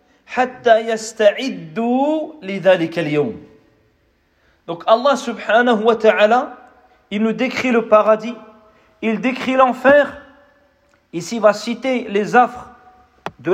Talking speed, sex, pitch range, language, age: 100 wpm, male, 215-255 Hz, Malay, 40-59